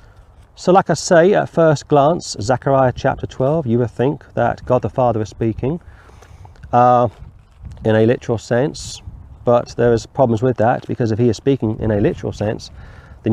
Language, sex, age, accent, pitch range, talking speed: English, male, 40-59, British, 105-135 Hz, 180 wpm